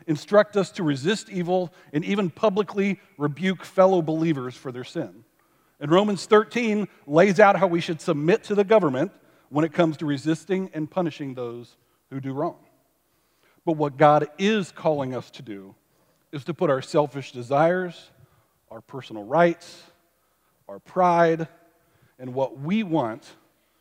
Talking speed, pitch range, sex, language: 150 wpm, 130-175 Hz, male, English